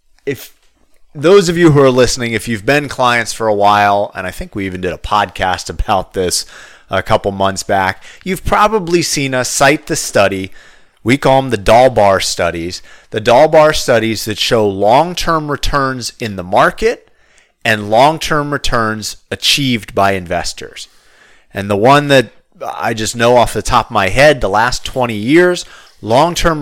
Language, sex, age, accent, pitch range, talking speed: English, male, 30-49, American, 105-150 Hz, 170 wpm